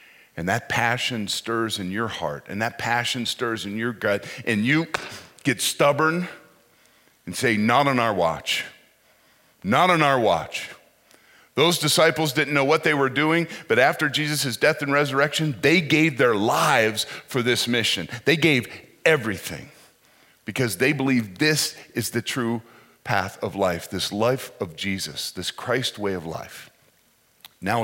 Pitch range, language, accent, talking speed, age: 100-135 Hz, English, American, 155 wpm, 40-59